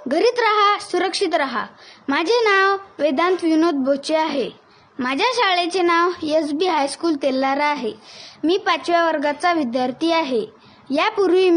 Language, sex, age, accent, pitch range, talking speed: Marathi, female, 20-39, native, 300-360 Hz, 125 wpm